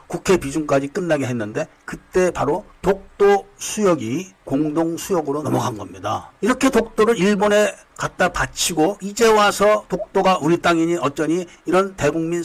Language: Korean